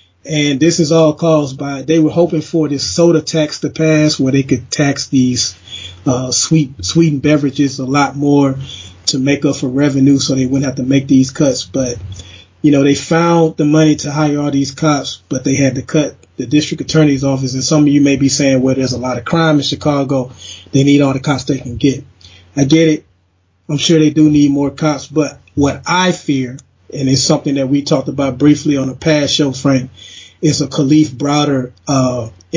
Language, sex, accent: English, male, American